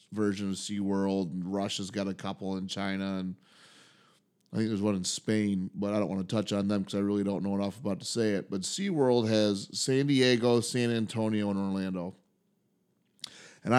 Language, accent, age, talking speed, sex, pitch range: English, American, 30-49, 195 wpm, male, 100-135 Hz